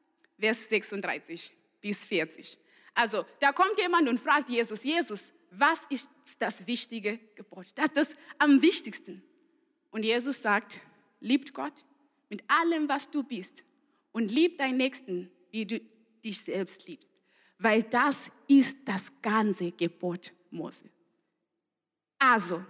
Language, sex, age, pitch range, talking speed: German, female, 20-39, 230-335 Hz, 130 wpm